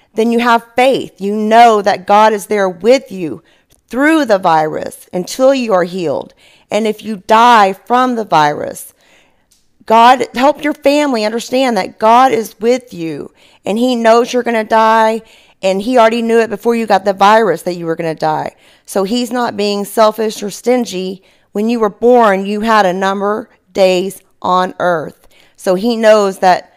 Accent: American